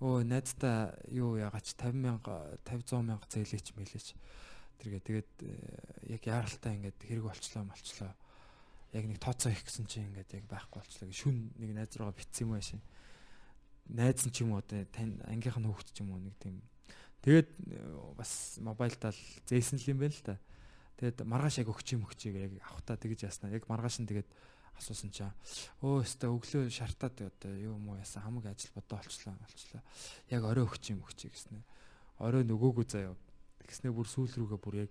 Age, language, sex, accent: 20-39, Korean, male, native